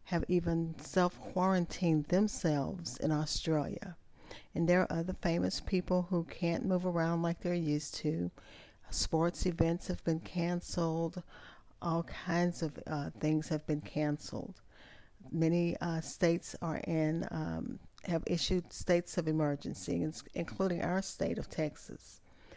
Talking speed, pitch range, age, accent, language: 130 wpm, 155-185 Hz, 40-59, American, English